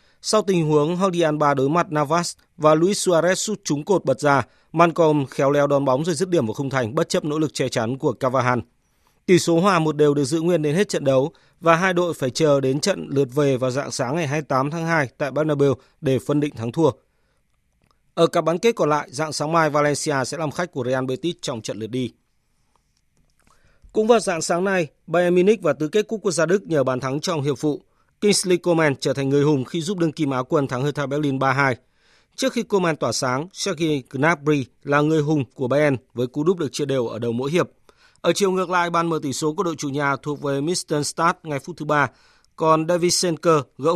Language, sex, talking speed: Vietnamese, male, 235 wpm